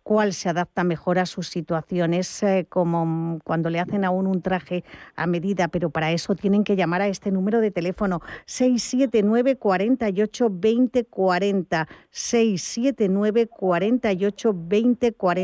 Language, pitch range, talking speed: Spanish, 180-210 Hz, 120 wpm